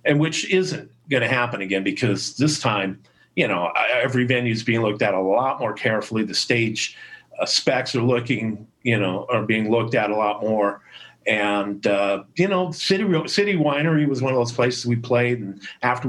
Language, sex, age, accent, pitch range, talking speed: English, male, 50-69, American, 125-170 Hz, 200 wpm